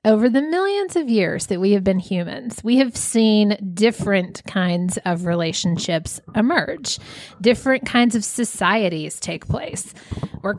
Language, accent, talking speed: English, American, 140 wpm